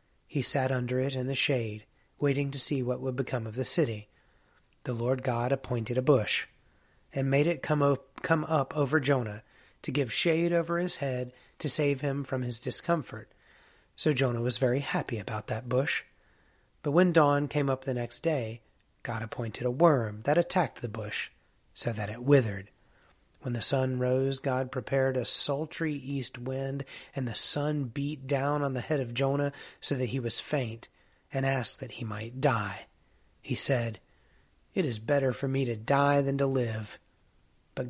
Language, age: English, 30-49